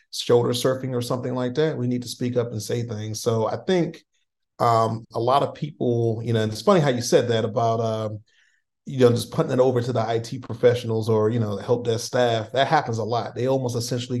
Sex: male